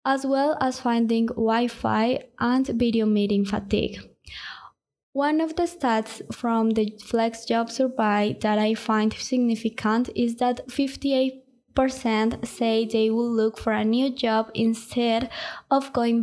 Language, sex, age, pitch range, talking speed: English, female, 20-39, 225-265 Hz, 130 wpm